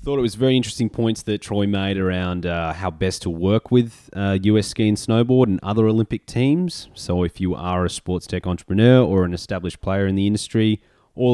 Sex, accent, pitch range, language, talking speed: male, Australian, 85-110 Hz, English, 215 wpm